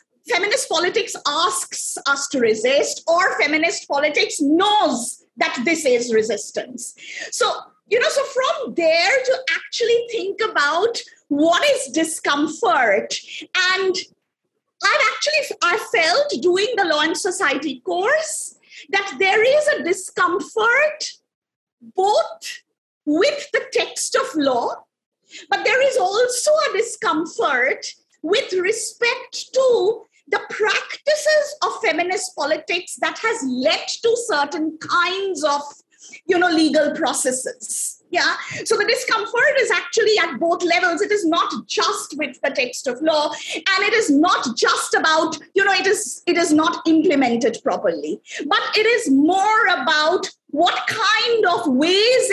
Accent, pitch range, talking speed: Indian, 305-430 Hz, 130 wpm